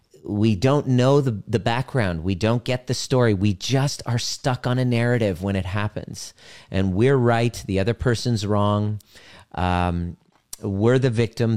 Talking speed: 165 wpm